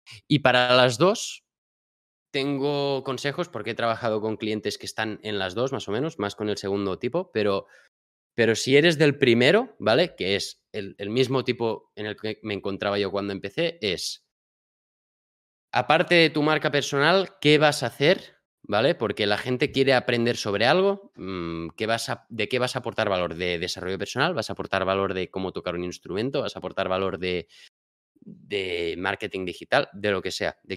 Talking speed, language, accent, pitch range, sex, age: 190 wpm, Spanish, Spanish, 110-160 Hz, male, 20-39